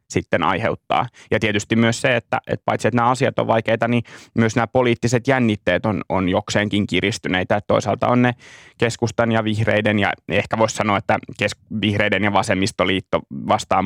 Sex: male